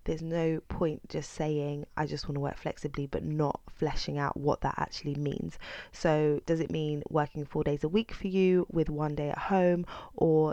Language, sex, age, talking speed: English, female, 20-39, 205 wpm